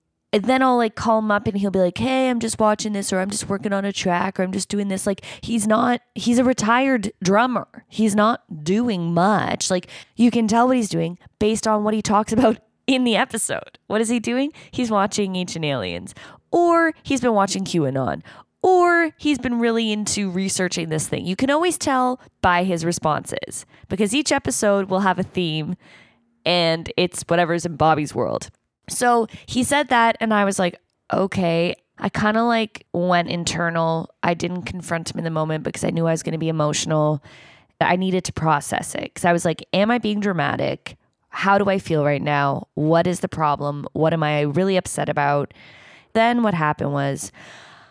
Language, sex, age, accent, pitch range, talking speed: English, female, 20-39, American, 165-225 Hz, 200 wpm